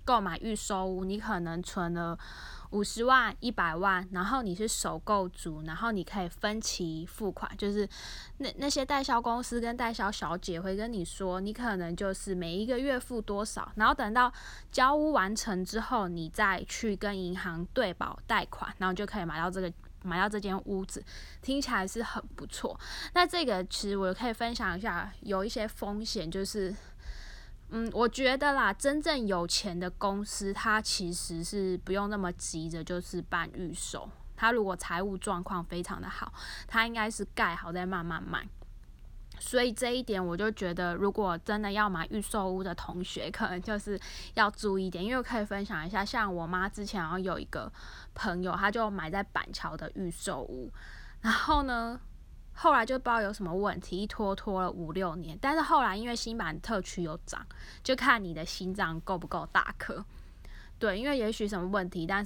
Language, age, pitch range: Chinese, 10-29, 180-225 Hz